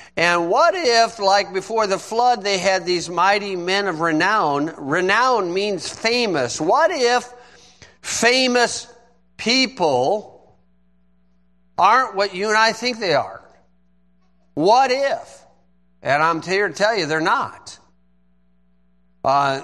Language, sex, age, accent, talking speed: English, male, 50-69, American, 120 wpm